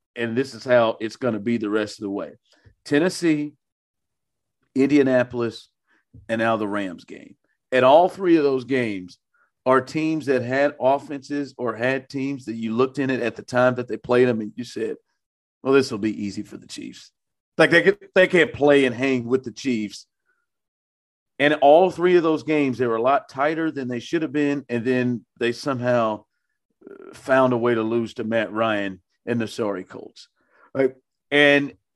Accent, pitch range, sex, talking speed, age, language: American, 115-155 Hz, male, 190 wpm, 40-59, English